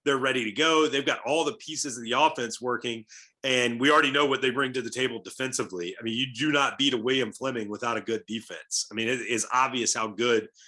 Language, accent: English, American